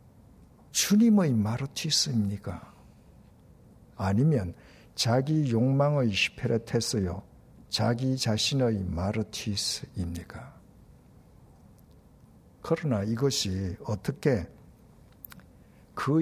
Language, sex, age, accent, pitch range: Korean, male, 60-79, native, 105-145 Hz